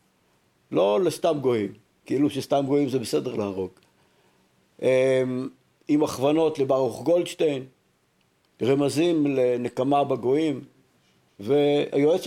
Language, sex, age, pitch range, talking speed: Hebrew, male, 50-69, 120-165 Hz, 85 wpm